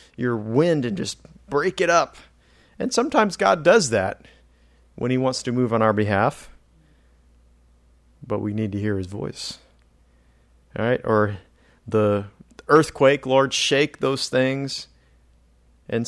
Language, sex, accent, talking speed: English, male, American, 135 wpm